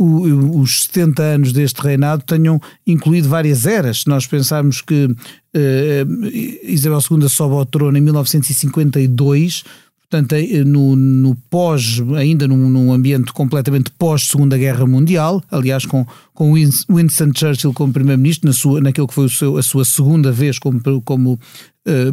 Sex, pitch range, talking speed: male, 135-155 Hz, 150 wpm